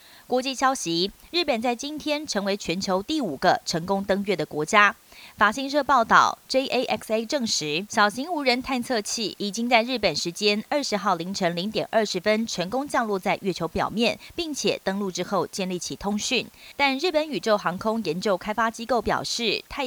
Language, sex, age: Chinese, female, 30-49